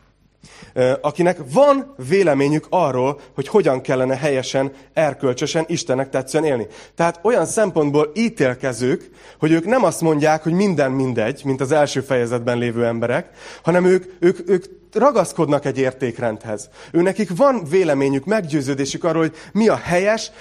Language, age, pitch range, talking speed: Hungarian, 30-49, 135-180 Hz, 135 wpm